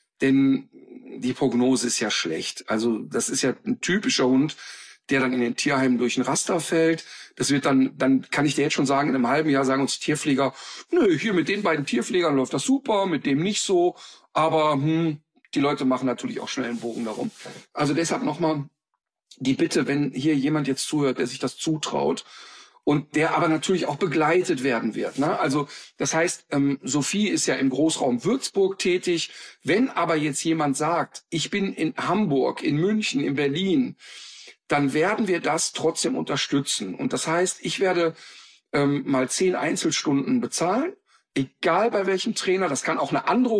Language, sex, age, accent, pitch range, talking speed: German, male, 50-69, German, 135-185 Hz, 185 wpm